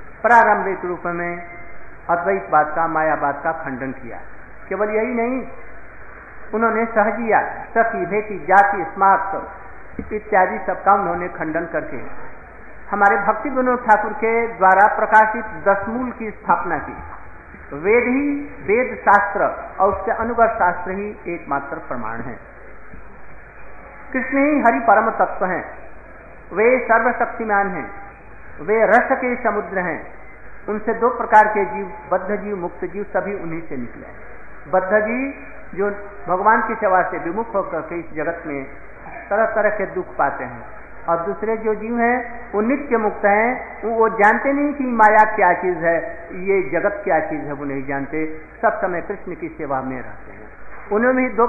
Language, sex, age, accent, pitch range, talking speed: Hindi, male, 50-69, native, 175-225 Hz, 145 wpm